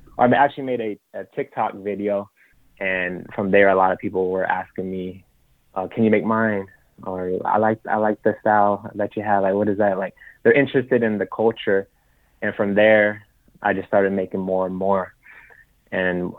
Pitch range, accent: 95-105 Hz, American